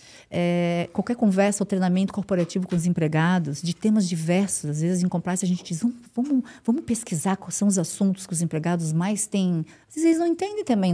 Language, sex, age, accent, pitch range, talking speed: Portuguese, female, 50-69, Brazilian, 180-225 Hz, 205 wpm